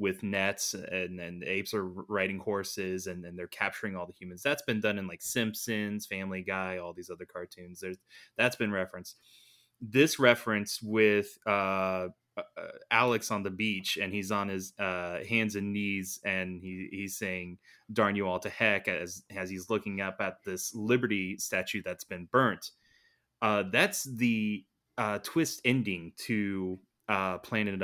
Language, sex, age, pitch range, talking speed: English, male, 20-39, 95-115 Hz, 165 wpm